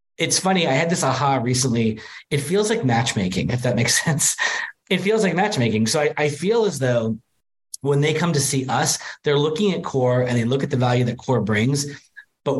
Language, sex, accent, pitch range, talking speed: English, male, American, 115-150 Hz, 215 wpm